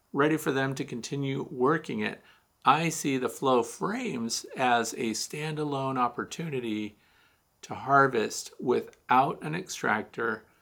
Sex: male